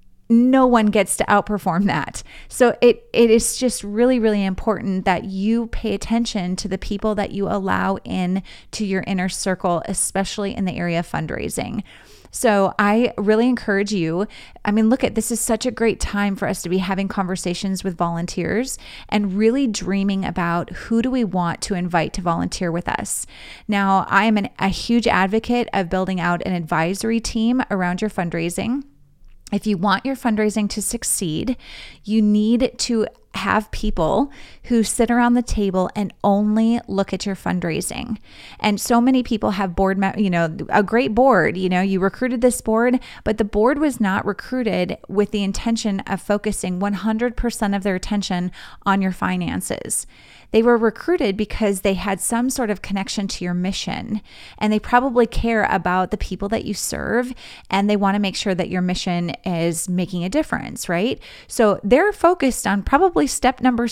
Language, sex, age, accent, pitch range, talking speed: English, female, 30-49, American, 190-230 Hz, 180 wpm